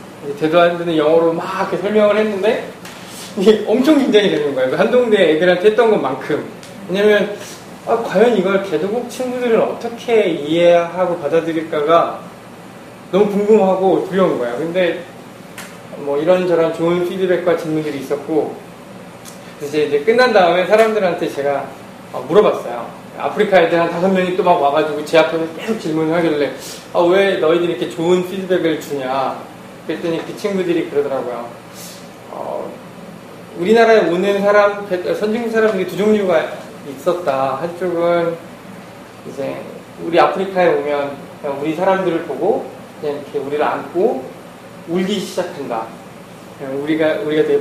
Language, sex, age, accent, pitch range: Korean, male, 20-39, native, 155-205 Hz